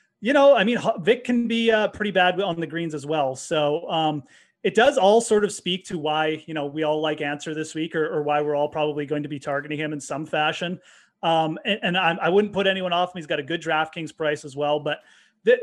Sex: male